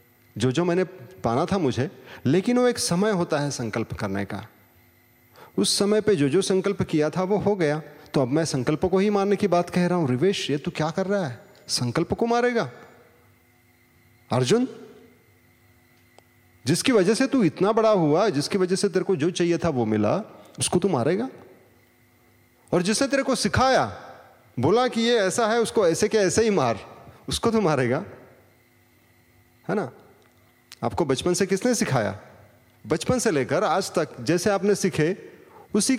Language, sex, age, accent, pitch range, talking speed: Hindi, male, 30-49, native, 120-190 Hz, 175 wpm